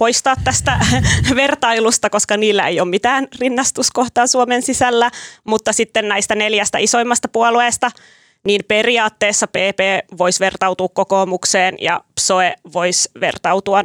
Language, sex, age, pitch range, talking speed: Finnish, female, 20-39, 195-225 Hz, 115 wpm